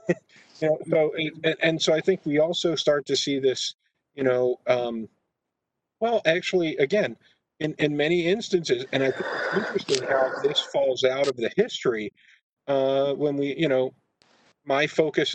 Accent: American